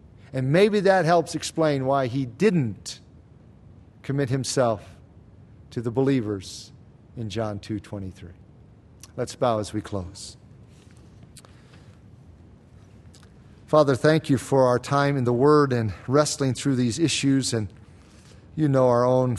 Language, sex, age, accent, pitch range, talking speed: English, male, 40-59, American, 115-150 Hz, 125 wpm